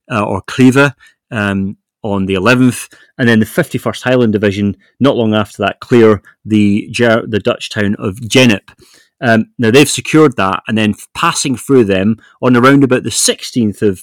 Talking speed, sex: 170 wpm, male